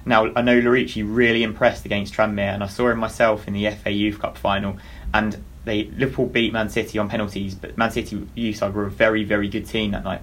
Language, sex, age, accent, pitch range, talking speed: English, male, 20-39, British, 100-115 Hz, 235 wpm